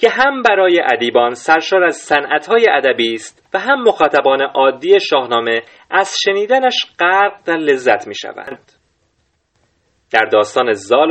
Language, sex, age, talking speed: Persian, male, 30-49, 125 wpm